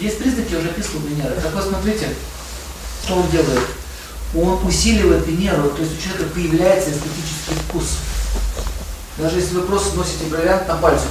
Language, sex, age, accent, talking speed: Russian, male, 40-59, native, 160 wpm